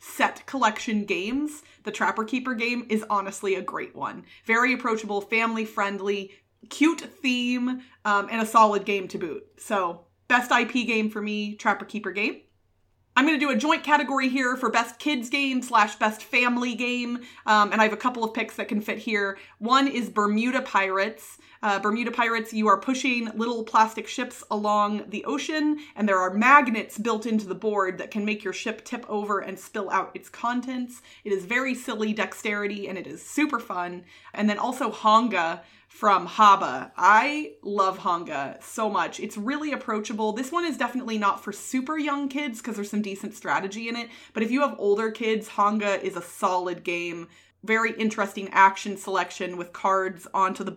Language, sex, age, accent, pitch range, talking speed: English, female, 30-49, American, 200-245 Hz, 185 wpm